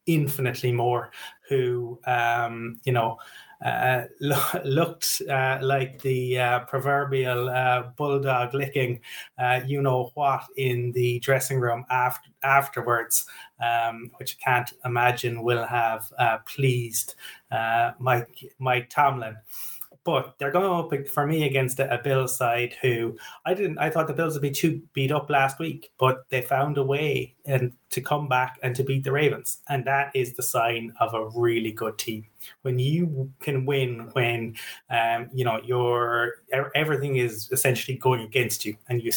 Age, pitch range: 30-49, 115-135 Hz